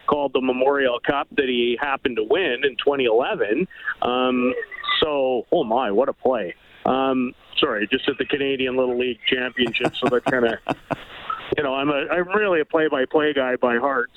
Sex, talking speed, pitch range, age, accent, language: male, 180 wpm, 130-195 Hz, 40-59, American, English